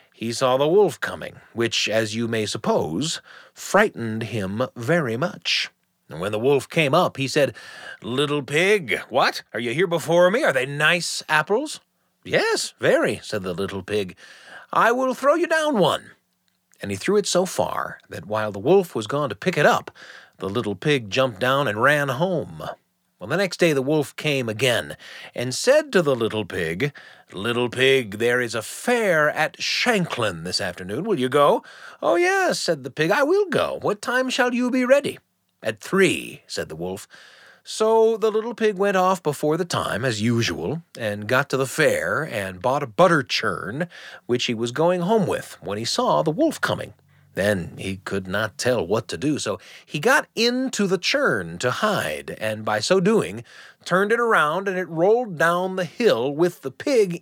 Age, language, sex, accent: 40-59, English, male, American